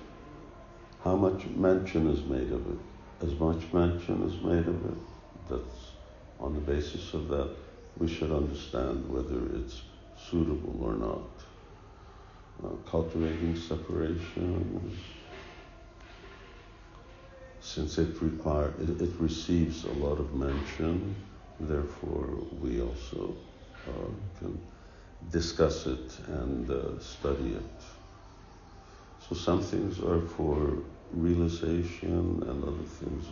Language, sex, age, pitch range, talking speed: English, male, 60-79, 80-90 Hz, 110 wpm